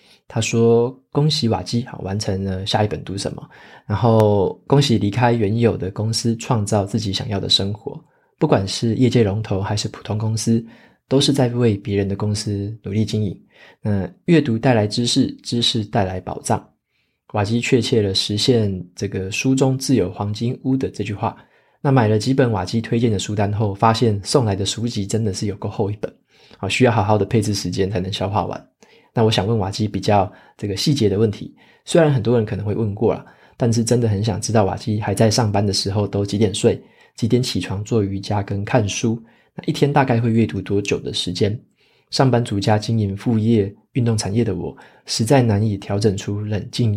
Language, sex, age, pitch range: Chinese, male, 20-39, 100-120 Hz